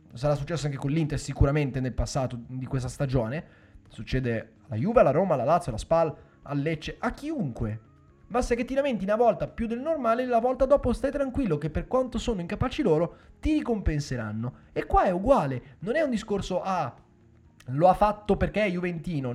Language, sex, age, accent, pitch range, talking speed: Italian, male, 20-39, native, 140-210 Hz, 195 wpm